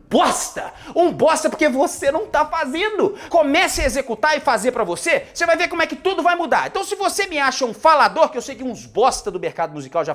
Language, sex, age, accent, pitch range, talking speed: Portuguese, male, 30-49, Brazilian, 250-310 Hz, 240 wpm